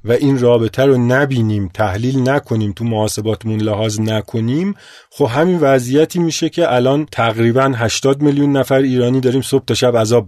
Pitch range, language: 120-155 Hz, Persian